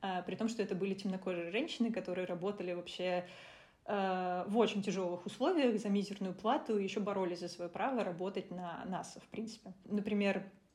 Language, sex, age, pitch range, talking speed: Russian, female, 20-39, 185-220 Hz, 165 wpm